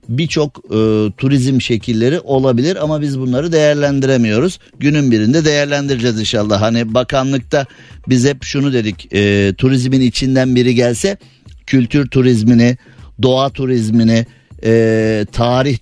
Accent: native